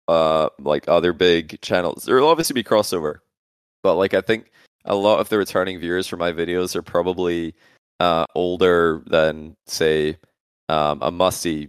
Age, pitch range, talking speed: 20-39, 85-95 Hz, 160 wpm